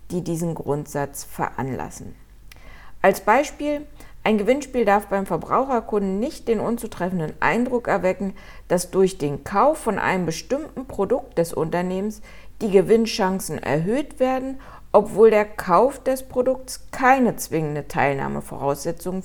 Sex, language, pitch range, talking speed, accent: female, German, 180-240 Hz, 120 wpm, German